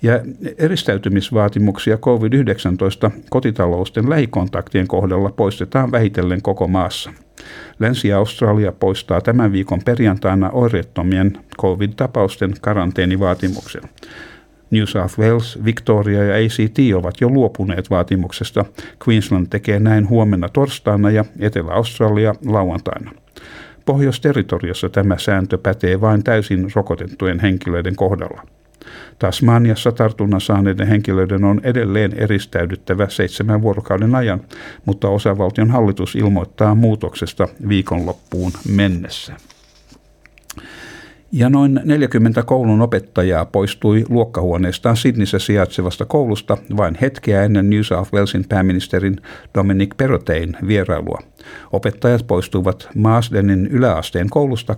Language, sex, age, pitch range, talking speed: Finnish, male, 60-79, 95-115 Hz, 95 wpm